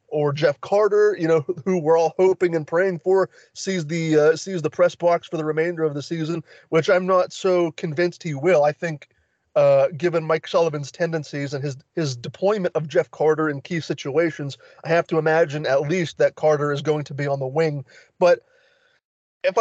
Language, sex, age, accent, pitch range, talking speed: English, male, 30-49, American, 150-180 Hz, 200 wpm